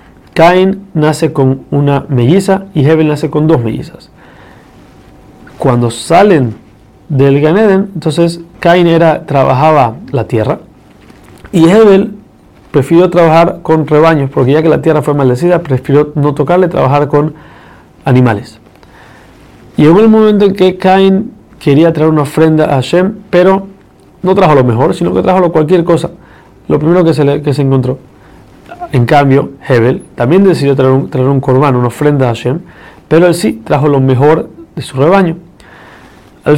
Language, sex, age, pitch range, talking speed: Spanish, male, 40-59, 140-180 Hz, 150 wpm